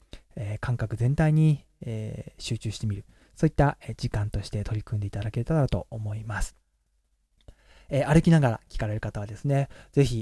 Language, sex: Japanese, male